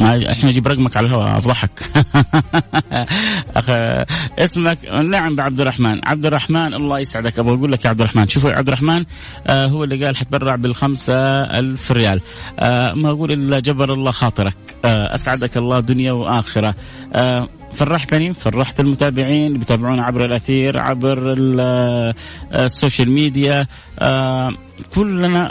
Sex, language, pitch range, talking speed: male, English, 115-140 Hz, 120 wpm